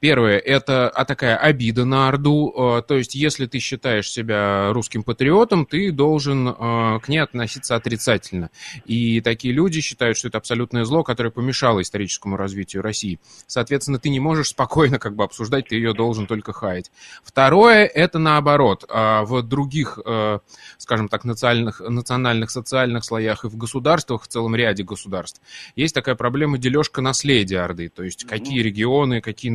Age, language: 20-39, Russian